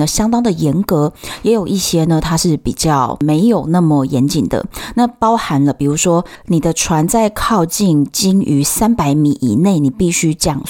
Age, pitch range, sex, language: 20-39, 155-205 Hz, female, Chinese